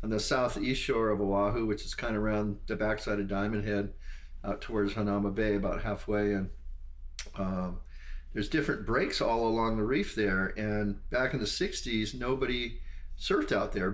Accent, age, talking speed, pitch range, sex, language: American, 40-59, 180 wpm, 95-115 Hz, male, English